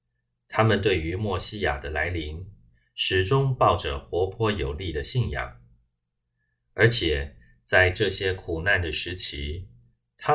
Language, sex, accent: Chinese, male, native